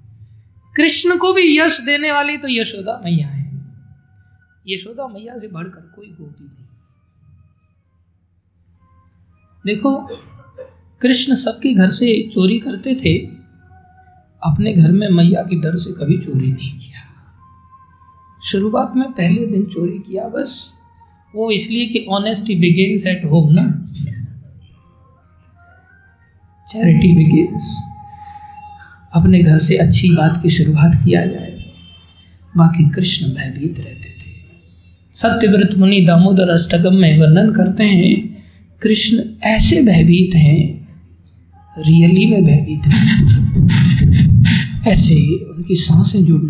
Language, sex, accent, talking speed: Hindi, male, native, 105 wpm